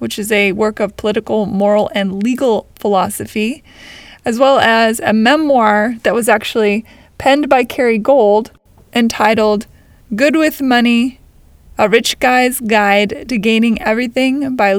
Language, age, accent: English, 20-39, American